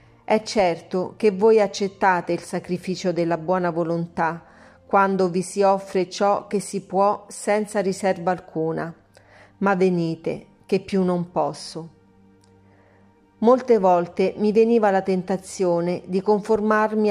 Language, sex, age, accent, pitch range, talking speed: Italian, female, 40-59, native, 175-210 Hz, 125 wpm